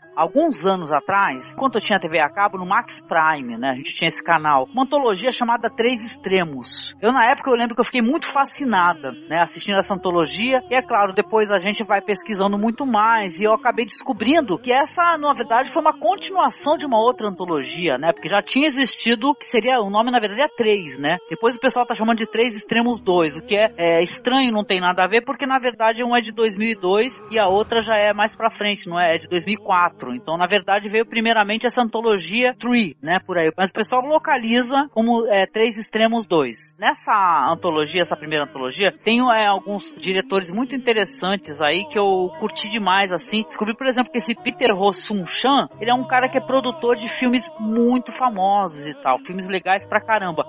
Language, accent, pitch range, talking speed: Portuguese, Brazilian, 180-240 Hz, 210 wpm